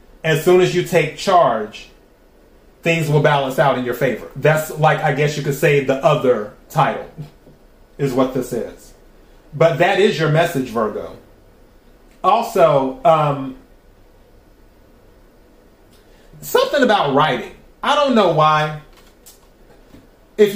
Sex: male